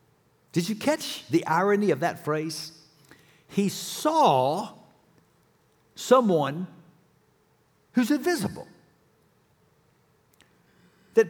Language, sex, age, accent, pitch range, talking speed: English, male, 60-79, American, 150-205 Hz, 75 wpm